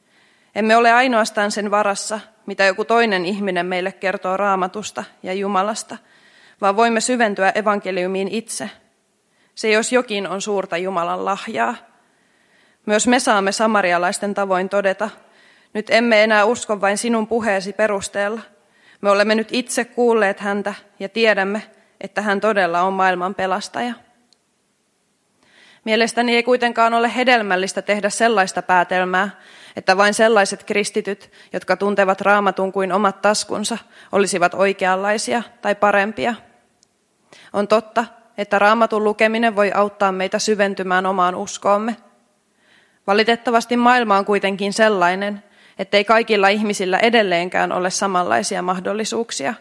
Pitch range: 195-220 Hz